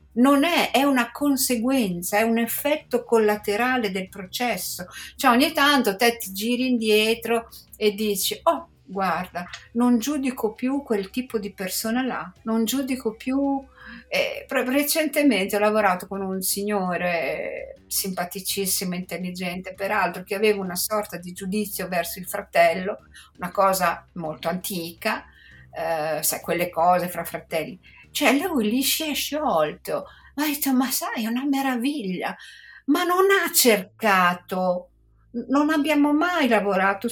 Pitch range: 195-270 Hz